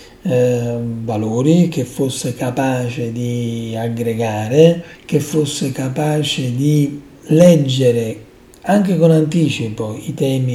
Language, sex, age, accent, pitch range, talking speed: Italian, male, 40-59, native, 120-160 Hz, 95 wpm